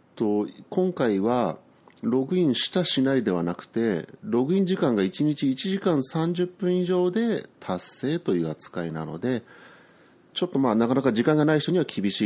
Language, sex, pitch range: Japanese, male, 90-150 Hz